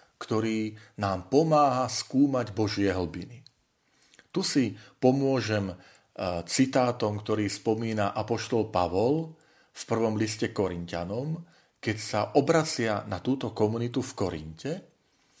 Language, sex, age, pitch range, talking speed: Slovak, male, 40-59, 100-130 Hz, 100 wpm